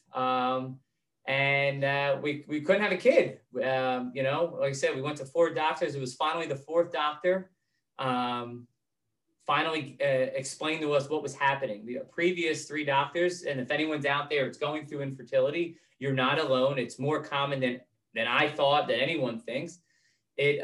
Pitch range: 135-165 Hz